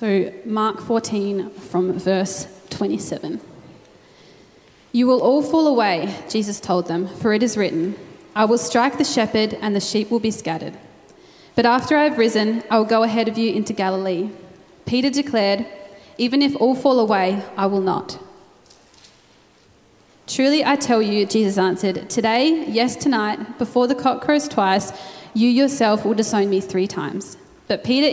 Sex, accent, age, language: female, Australian, 20-39, English